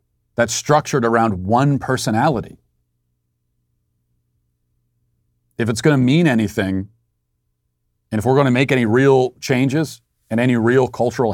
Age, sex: 40-59, male